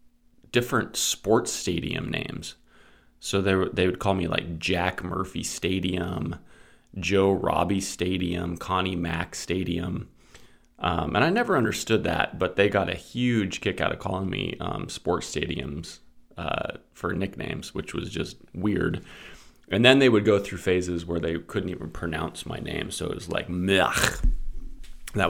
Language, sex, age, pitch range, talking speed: English, male, 20-39, 85-100 Hz, 155 wpm